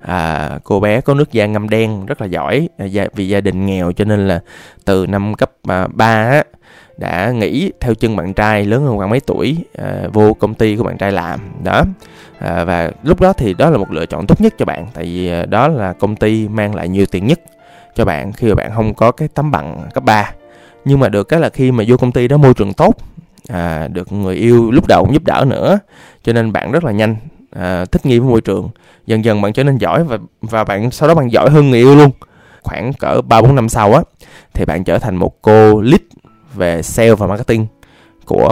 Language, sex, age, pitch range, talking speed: Vietnamese, male, 20-39, 100-130 Hz, 240 wpm